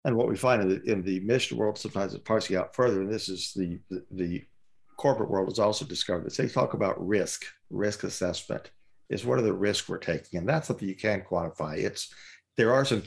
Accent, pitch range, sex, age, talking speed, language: American, 95-115 Hz, male, 50-69, 225 wpm, English